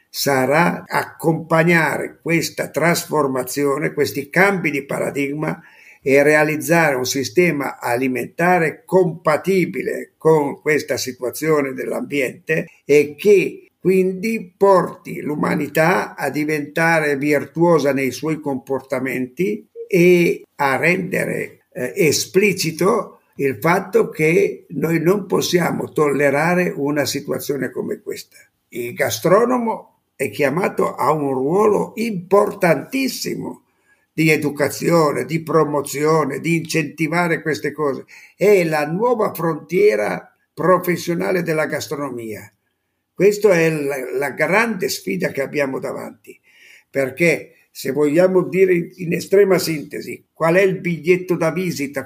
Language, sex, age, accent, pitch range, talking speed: Italian, male, 50-69, native, 145-185 Hz, 100 wpm